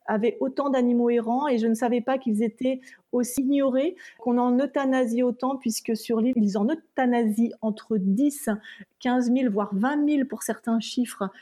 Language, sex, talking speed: French, female, 175 wpm